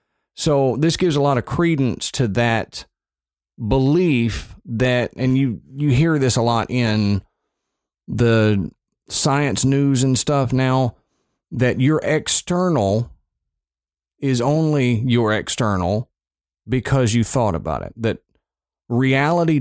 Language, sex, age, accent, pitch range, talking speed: English, male, 40-59, American, 100-130 Hz, 120 wpm